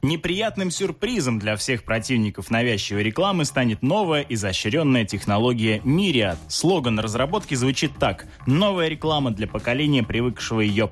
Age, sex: 20-39, male